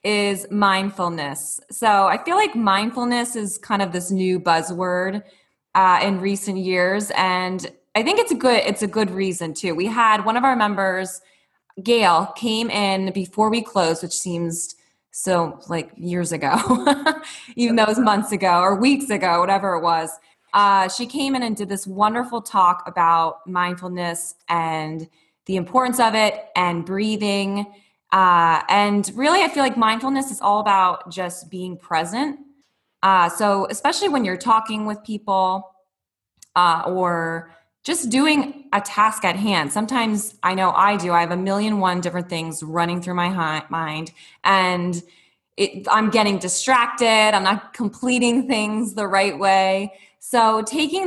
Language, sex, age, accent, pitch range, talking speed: English, female, 20-39, American, 180-220 Hz, 160 wpm